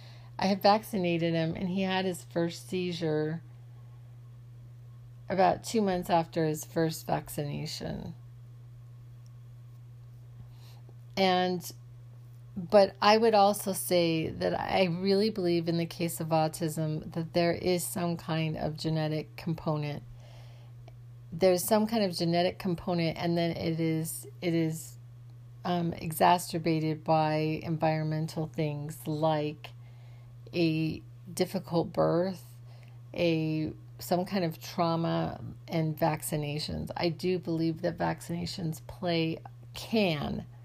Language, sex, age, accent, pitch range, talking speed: English, female, 40-59, American, 120-170 Hz, 110 wpm